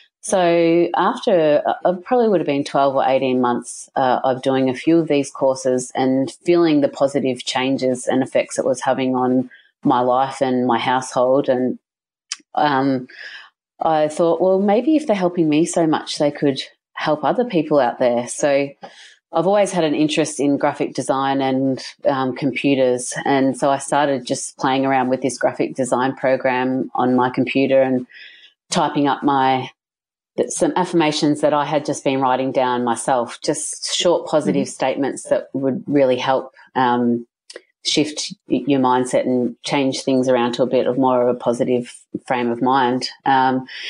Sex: female